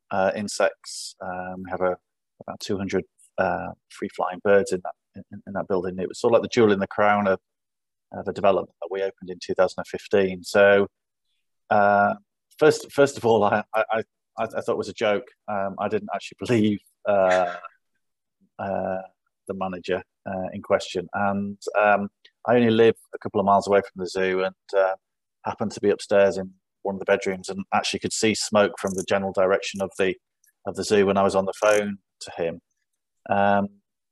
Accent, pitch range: British, 95-100 Hz